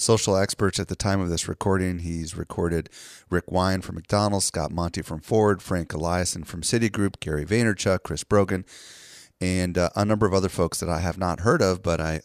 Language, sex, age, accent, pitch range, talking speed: English, male, 30-49, American, 85-110 Hz, 200 wpm